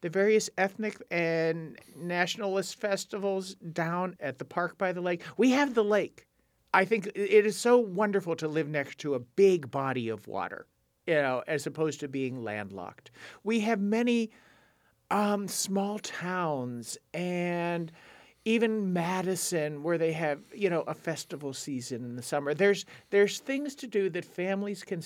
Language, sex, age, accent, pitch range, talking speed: English, male, 50-69, American, 150-200 Hz, 160 wpm